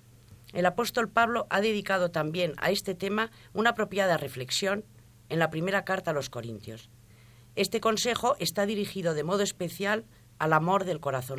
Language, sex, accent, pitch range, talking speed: Spanish, female, Spanish, 120-190 Hz, 160 wpm